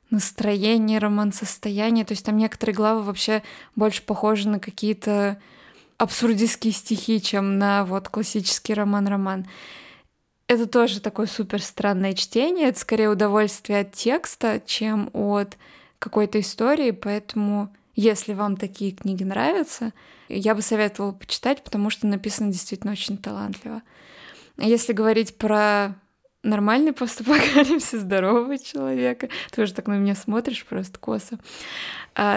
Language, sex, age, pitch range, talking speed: Russian, female, 20-39, 200-230 Hz, 125 wpm